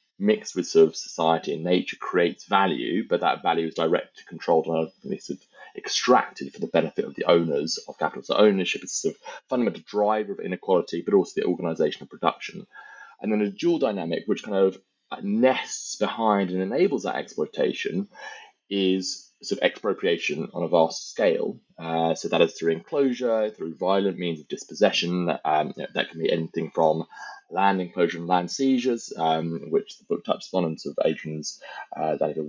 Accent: British